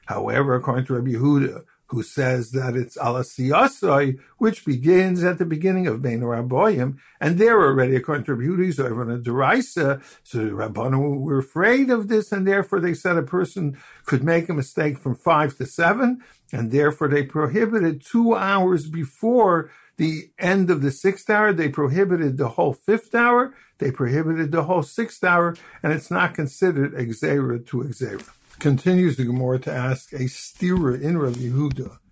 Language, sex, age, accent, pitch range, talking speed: English, male, 60-79, American, 125-165 Hz, 160 wpm